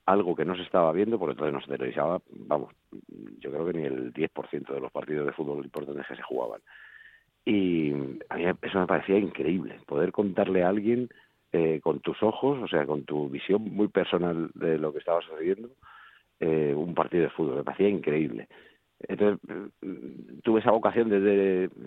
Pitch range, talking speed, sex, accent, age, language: 80-100 Hz, 185 wpm, male, Spanish, 50-69, Spanish